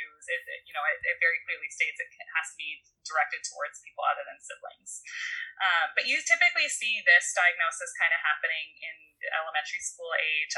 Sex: female